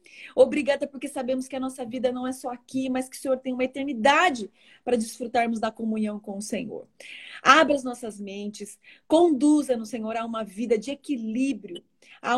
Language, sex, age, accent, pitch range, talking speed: Portuguese, female, 30-49, Brazilian, 235-290 Hz, 185 wpm